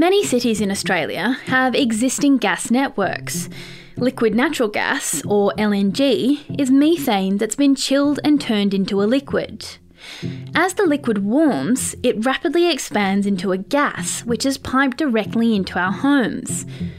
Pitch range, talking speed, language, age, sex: 200-275 Hz, 140 wpm, English, 10-29, female